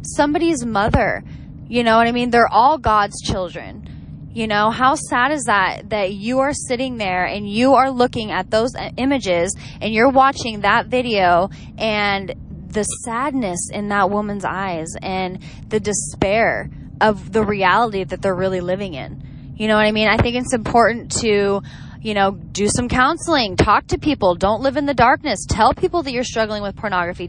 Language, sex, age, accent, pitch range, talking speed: English, female, 10-29, American, 190-245 Hz, 180 wpm